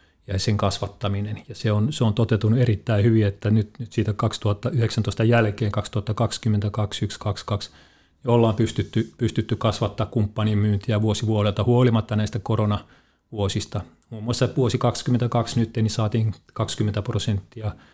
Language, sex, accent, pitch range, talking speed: Finnish, male, native, 105-120 Hz, 125 wpm